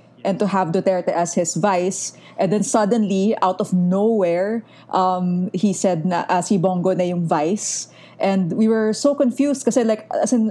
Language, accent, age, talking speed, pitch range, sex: English, Filipino, 20-39, 175 wpm, 180-220 Hz, female